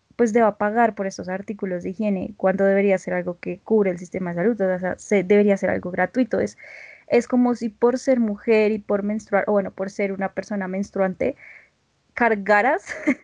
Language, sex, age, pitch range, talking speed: Spanish, female, 10-29, 195-225 Hz, 190 wpm